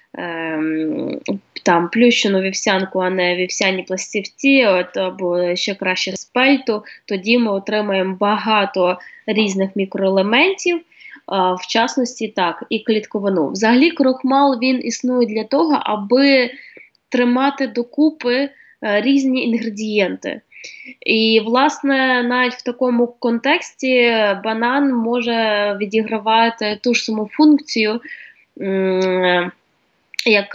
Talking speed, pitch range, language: 95 wpm, 200-270 Hz, Ukrainian